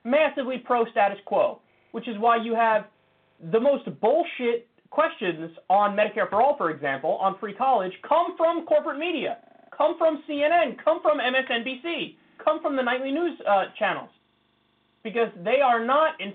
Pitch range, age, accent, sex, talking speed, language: 175-260 Hz, 30-49, American, male, 160 wpm, English